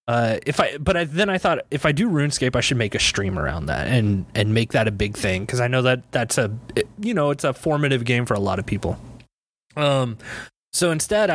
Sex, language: male, English